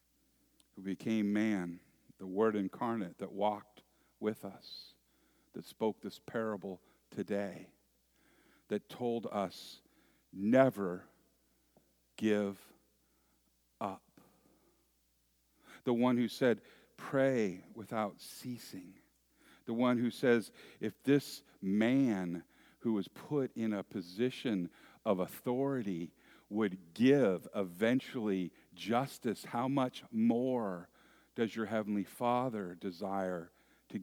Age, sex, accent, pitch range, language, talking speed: 50-69, male, American, 95-130 Hz, English, 95 wpm